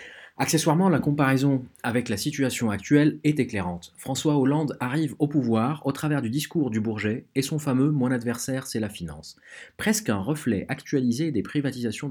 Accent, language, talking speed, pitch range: French, French, 180 wpm, 95-135 Hz